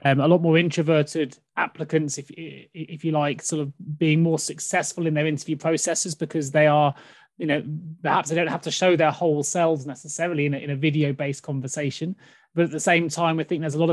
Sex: male